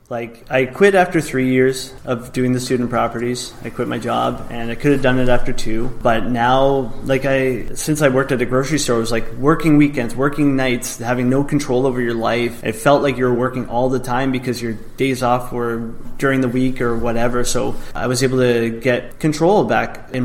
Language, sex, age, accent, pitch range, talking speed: English, male, 20-39, American, 120-135 Hz, 220 wpm